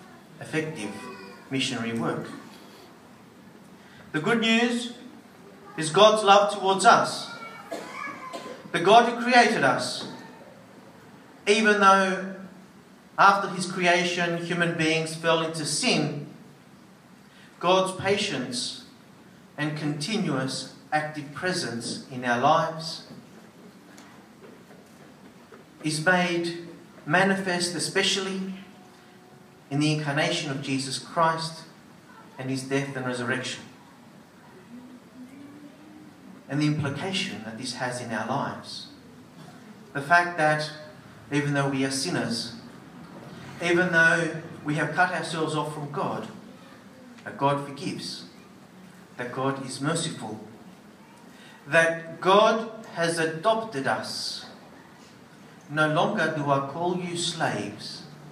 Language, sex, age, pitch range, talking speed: English, male, 40-59, 145-195 Hz, 100 wpm